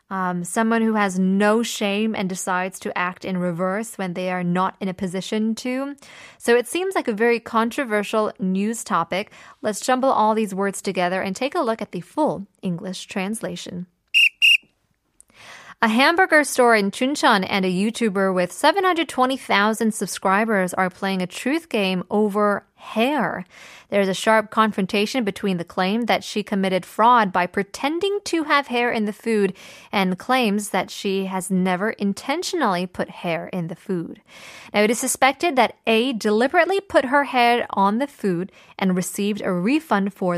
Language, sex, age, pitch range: Korean, female, 20-39, 185-240 Hz